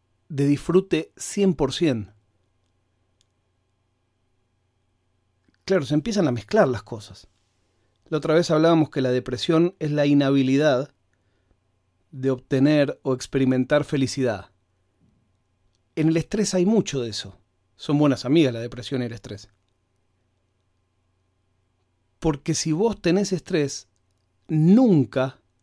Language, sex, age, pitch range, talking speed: Spanish, male, 40-59, 95-155 Hz, 110 wpm